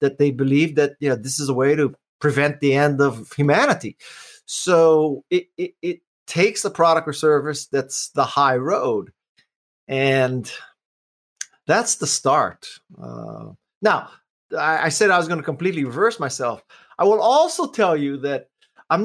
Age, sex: 30-49, male